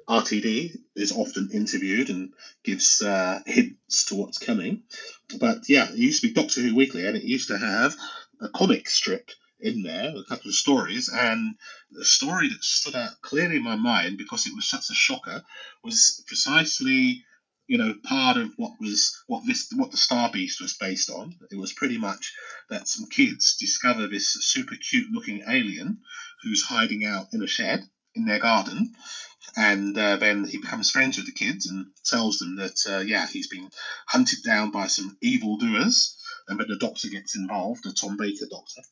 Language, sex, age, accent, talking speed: English, male, 40-59, British, 190 wpm